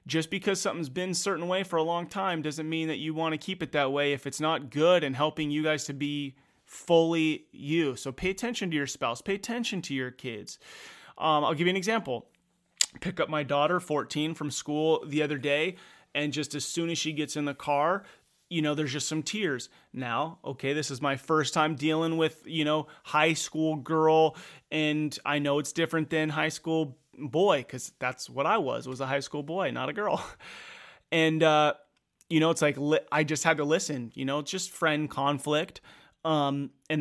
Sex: male